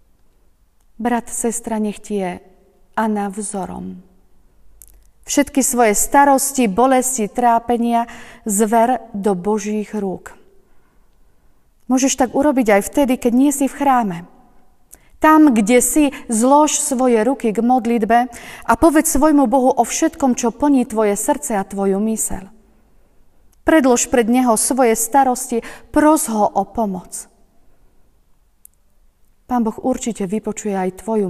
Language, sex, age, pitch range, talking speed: Slovak, female, 40-59, 200-260 Hz, 115 wpm